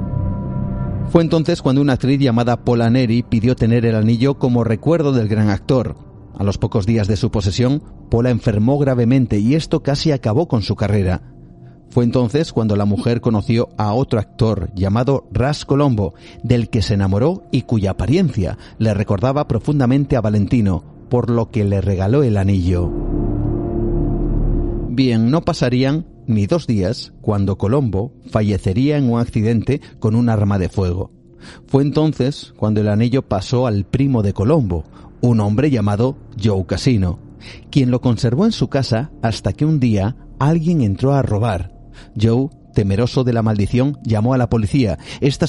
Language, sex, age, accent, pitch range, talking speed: Spanish, male, 40-59, Spanish, 105-135 Hz, 160 wpm